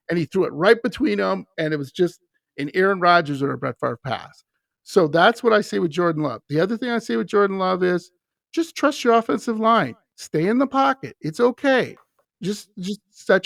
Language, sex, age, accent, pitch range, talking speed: English, male, 50-69, American, 165-245 Hz, 225 wpm